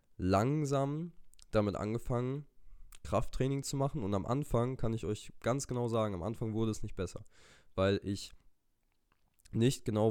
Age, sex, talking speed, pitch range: 20-39, male, 150 wpm, 95-115 Hz